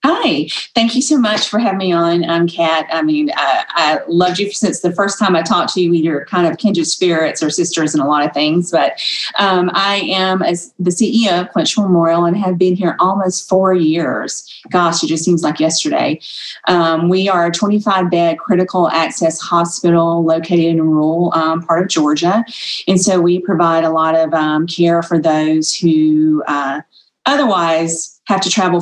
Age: 30-49